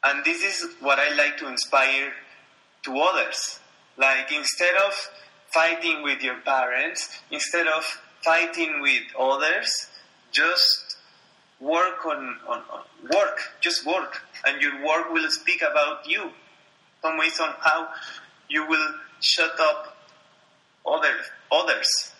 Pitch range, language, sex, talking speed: 135-160 Hz, English, male, 125 wpm